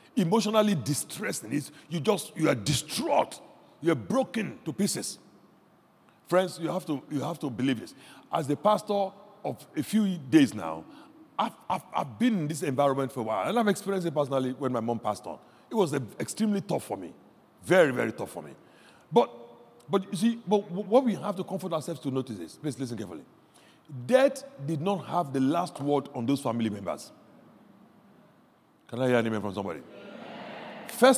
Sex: male